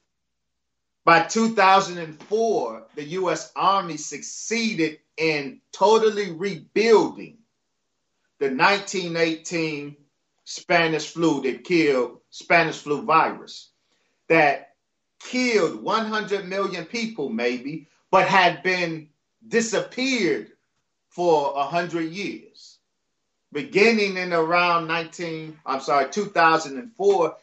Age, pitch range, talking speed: 40-59, 165-220 Hz, 85 wpm